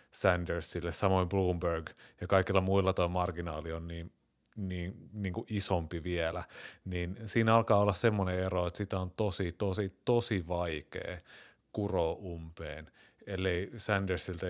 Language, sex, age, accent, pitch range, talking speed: Finnish, male, 30-49, native, 90-105 Hz, 135 wpm